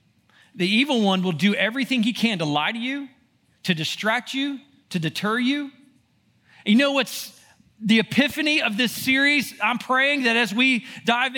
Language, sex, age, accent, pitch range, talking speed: English, male, 40-59, American, 195-255 Hz, 170 wpm